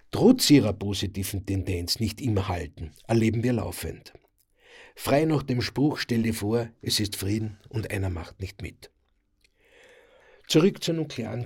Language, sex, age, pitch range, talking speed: German, male, 50-69, 105-140 Hz, 140 wpm